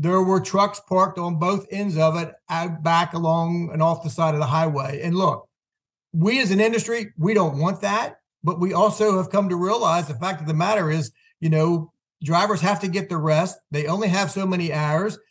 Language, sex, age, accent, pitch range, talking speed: English, male, 50-69, American, 160-195 Hz, 215 wpm